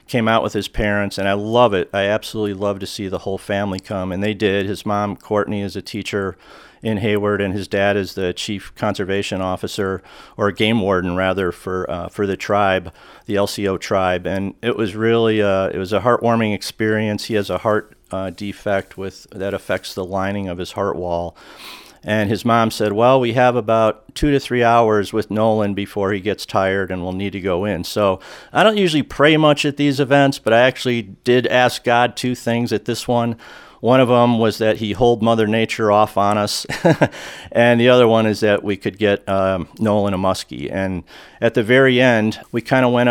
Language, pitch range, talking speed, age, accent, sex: English, 95-115 Hz, 210 wpm, 50-69, American, male